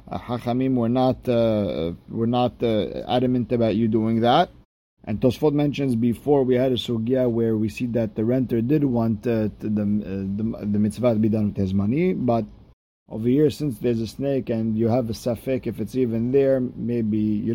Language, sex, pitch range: English, male, 105-125 Hz